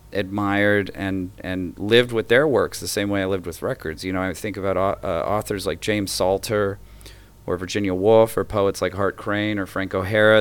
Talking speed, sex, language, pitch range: 200 wpm, male, German, 95-110 Hz